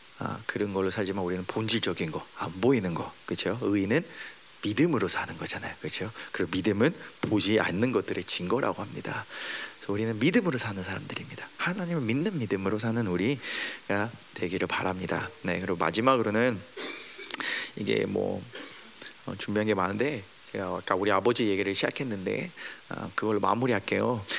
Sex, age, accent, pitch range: male, 30-49, native, 100-135 Hz